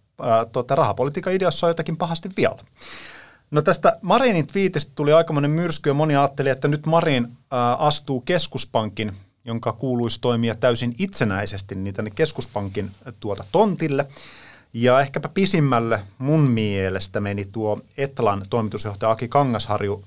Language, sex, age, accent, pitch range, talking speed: Finnish, male, 30-49, native, 110-145 Hz, 130 wpm